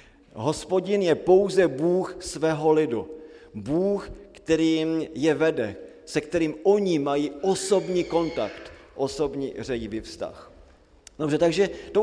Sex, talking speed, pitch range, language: male, 110 wpm, 145-195 Hz, Slovak